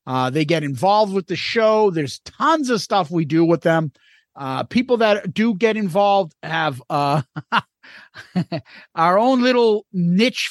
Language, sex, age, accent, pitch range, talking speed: English, male, 50-69, American, 160-225 Hz, 155 wpm